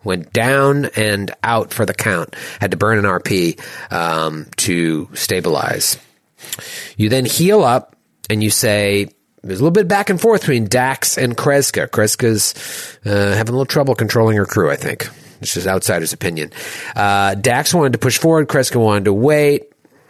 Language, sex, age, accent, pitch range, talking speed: English, male, 30-49, American, 95-135 Hz, 175 wpm